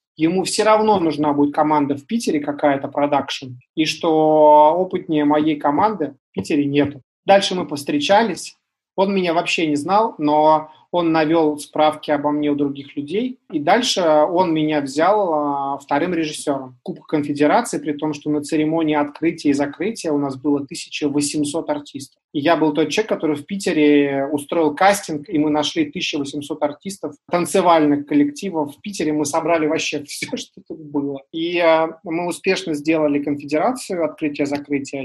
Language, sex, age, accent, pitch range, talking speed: Russian, male, 30-49, native, 145-170 Hz, 150 wpm